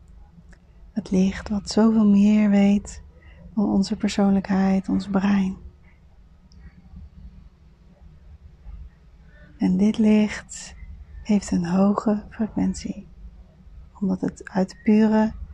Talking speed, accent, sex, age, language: 85 wpm, Dutch, female, 30-49, Dutch